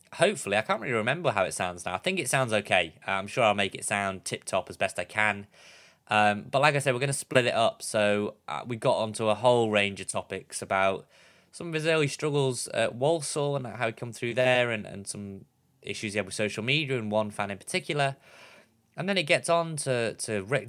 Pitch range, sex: 100-125 Hz, male